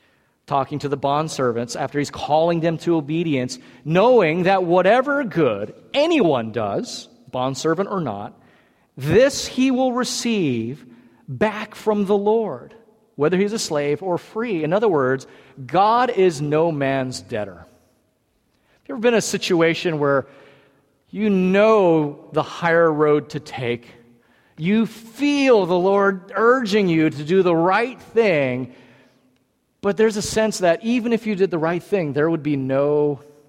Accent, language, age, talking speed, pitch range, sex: American, English, 40-59, 150 wpm, 135-195 Hz, male